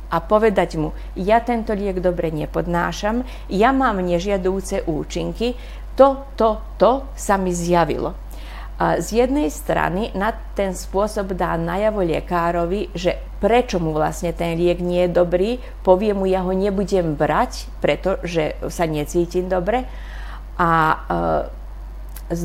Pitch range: 175-215 Hz